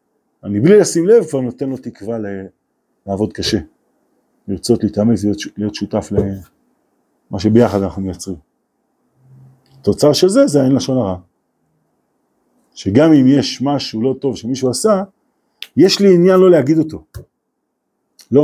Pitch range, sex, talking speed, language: 105-155 Hz, male, 135 wpm, Hebrew